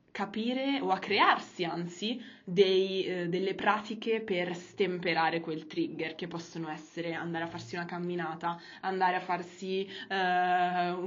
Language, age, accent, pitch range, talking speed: Italian, 20-39, native, 170-200 Hz, 130 wpm